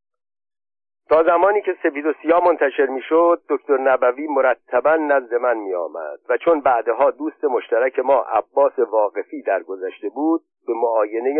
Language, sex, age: Persian, male, 50-69